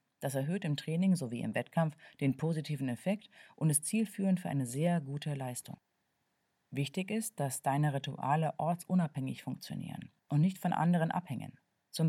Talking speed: 155 wpm